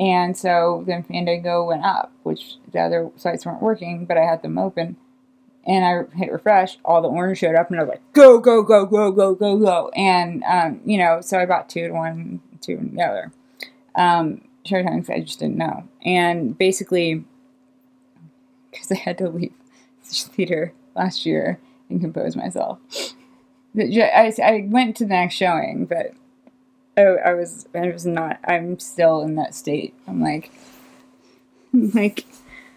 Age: 20-39